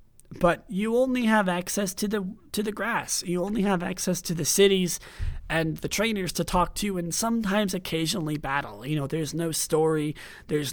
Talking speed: 185 wpm